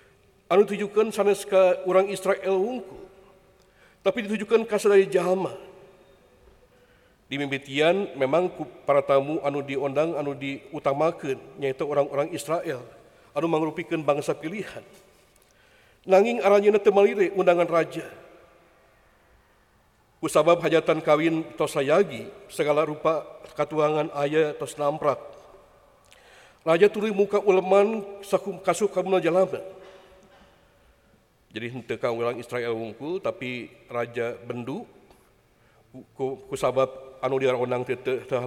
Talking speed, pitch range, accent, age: 95 wpm, 140-190 Hz, Malaysian, 50-69